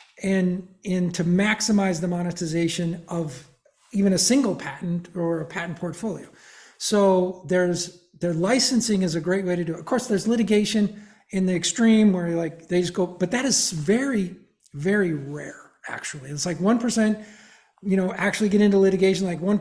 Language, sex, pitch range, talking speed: English, male, 175-205 Hz, 170 wpm